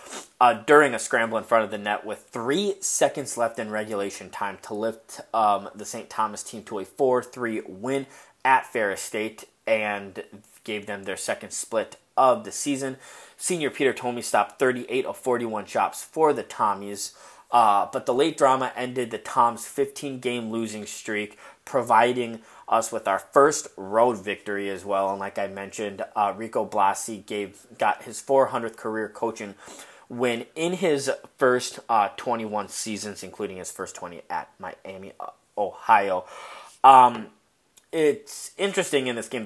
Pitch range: 105-130 Hz